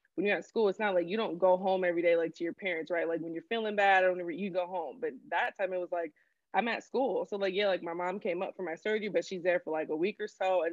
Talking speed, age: 315 wpm, 20-39